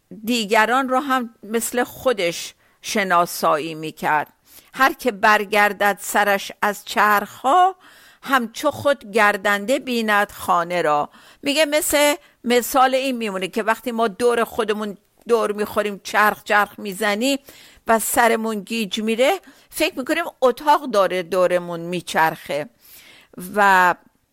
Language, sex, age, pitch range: Persian, female, 50-69, 200-255 Hz